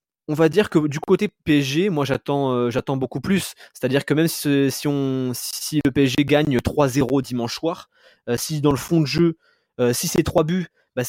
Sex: male